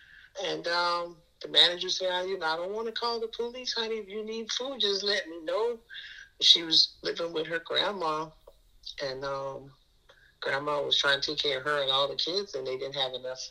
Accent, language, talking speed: American, English, 220 wpm